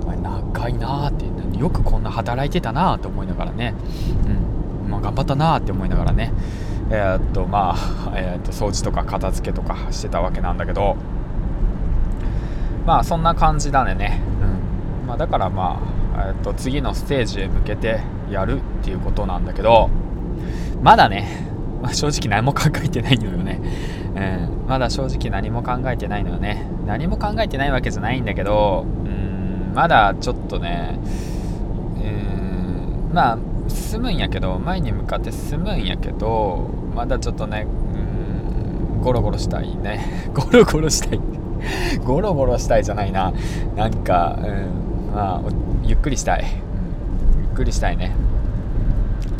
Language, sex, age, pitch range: Japanese, male, 20-39, 95-120 Hz